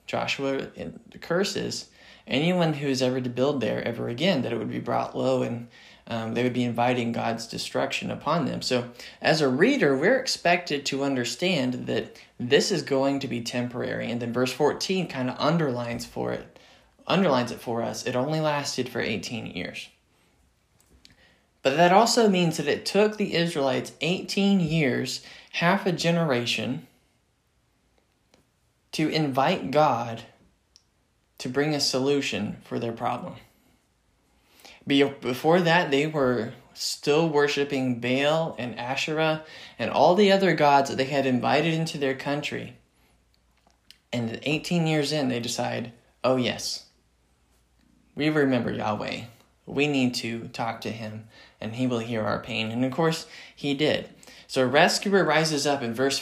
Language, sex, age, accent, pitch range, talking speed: English, male, 20-39, American, 120-155 Hz, 150 wpm